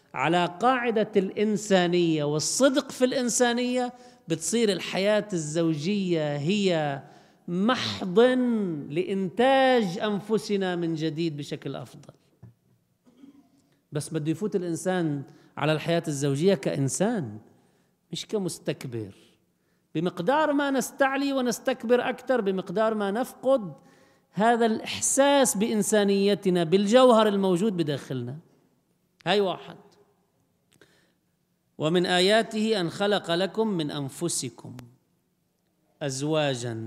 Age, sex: 40-59, male